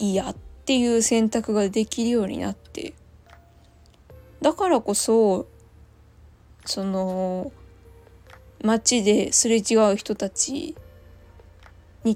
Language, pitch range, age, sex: Japanese, 185-235 Hz, 20-39, female